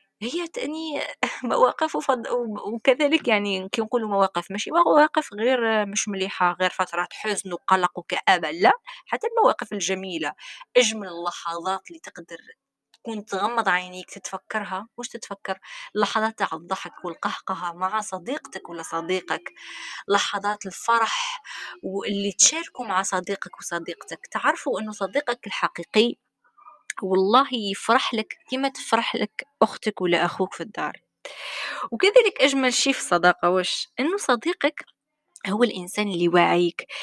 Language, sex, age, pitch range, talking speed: Arabic, female, 20-39, 190-270 Hz, 115 wpm